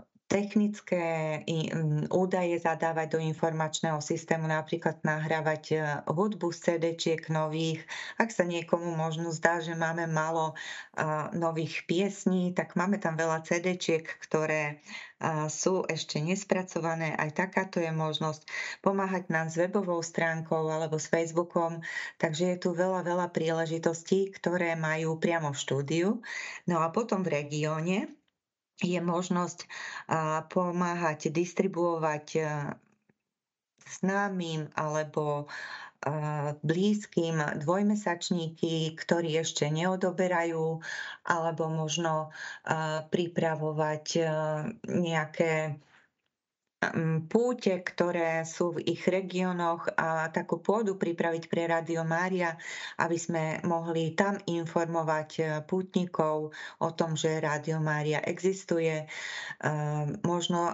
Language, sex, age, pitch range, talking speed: Slovak, female, 30-49, 160-180 Hz, 100 wpm